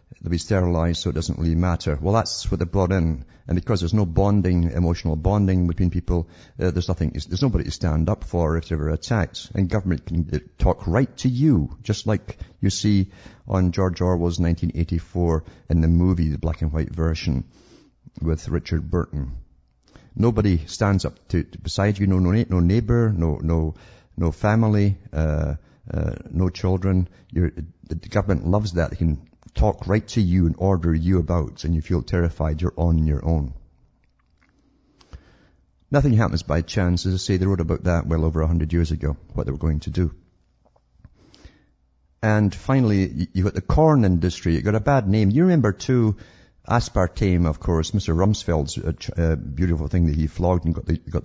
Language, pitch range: English, 80-95 Hz